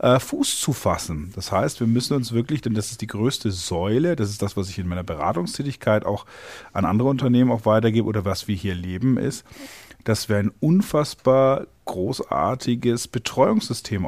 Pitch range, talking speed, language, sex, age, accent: 95-120 Hz, 175 wpm, German, male, 40-59, German